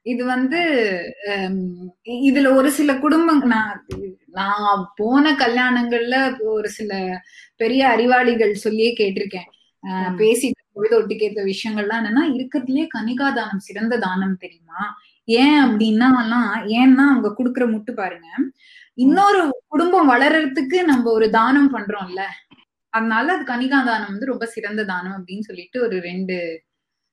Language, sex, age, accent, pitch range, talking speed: Tamil, female, 20-39, native, 205-265 Hz, 115 wpm